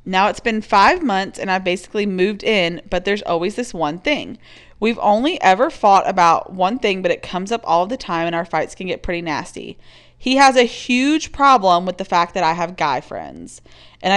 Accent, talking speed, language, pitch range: American, 215 wpm, English, 175-230 Hz